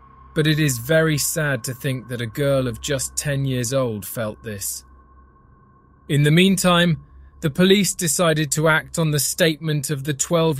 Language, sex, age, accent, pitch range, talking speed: English, male, 20-39, British, 105-150 Hz, 175 wpm